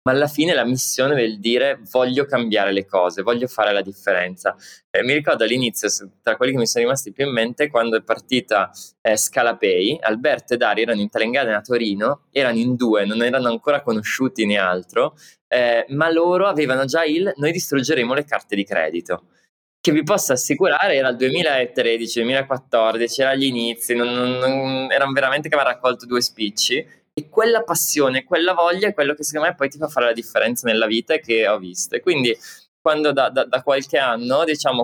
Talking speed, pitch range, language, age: 195 wpm, 115-150 Hz, Italian, 20-39